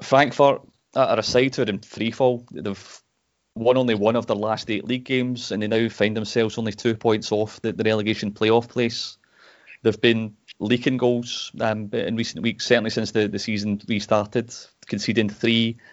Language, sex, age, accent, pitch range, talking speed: English, male, 30-49, British, 105-120 Hz, 175 wpm